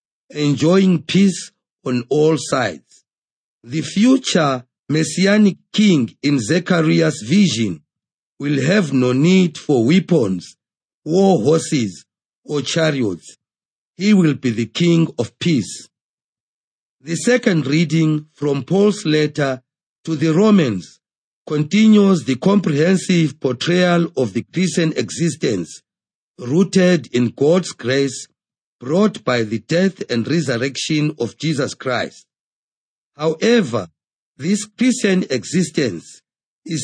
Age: 50-69